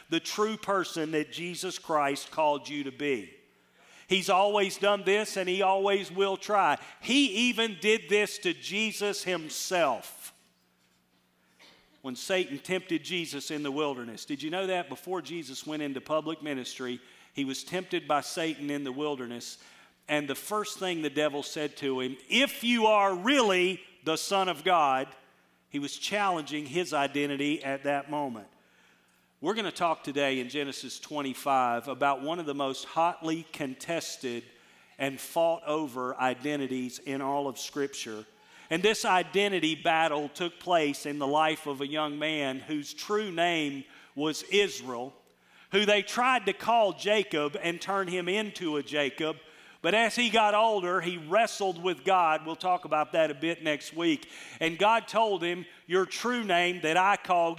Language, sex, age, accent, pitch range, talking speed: English, male, 50-69, American, 145-195 Hz, 165 wpm